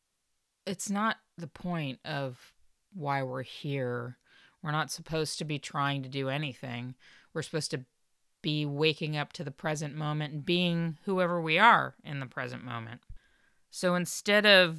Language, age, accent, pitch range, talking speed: English, 30-49, American, 135-160 Hz, 160 wpm